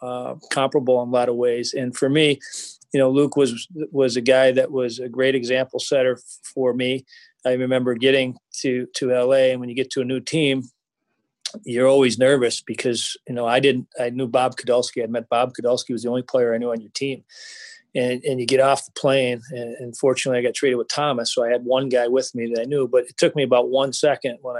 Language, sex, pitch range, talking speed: English, male, 125-135 Hz, 240 wpm